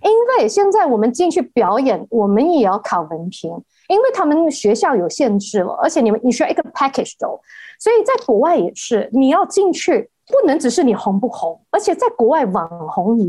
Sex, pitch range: female, 210-300 Hz